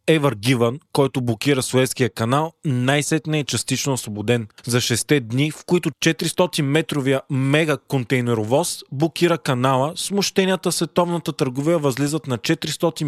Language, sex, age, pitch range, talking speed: Bulgarian, male, 20-39, 130-160 Hz, 120 wpm